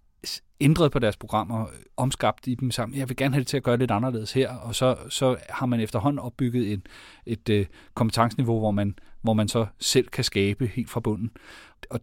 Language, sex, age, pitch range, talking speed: Danish, male, 30-49, 105-125 Hz, 215 wpm